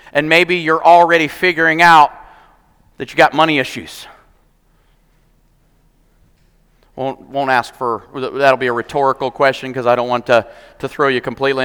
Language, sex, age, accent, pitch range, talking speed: English, male, 40-59, American, 135-185 Hz, 150 wpm